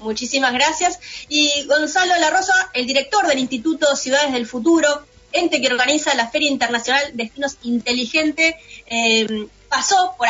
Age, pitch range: 20-39, 245-310 Hz